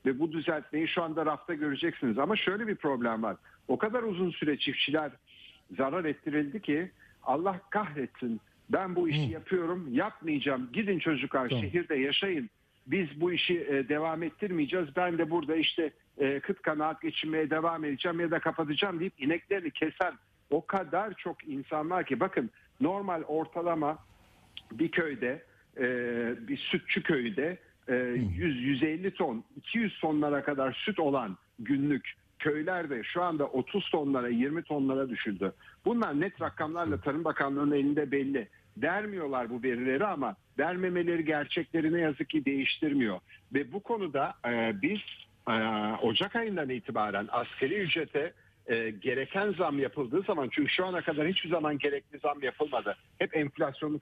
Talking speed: 135 wpm